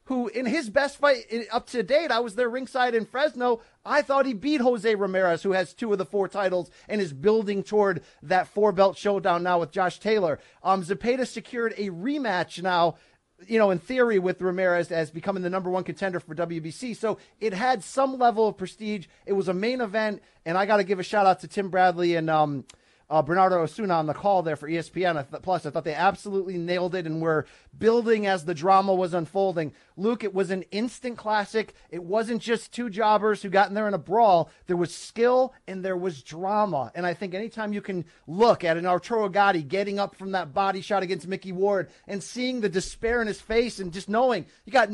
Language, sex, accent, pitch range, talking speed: English, male, American, 180-225 Hz, 220 wpm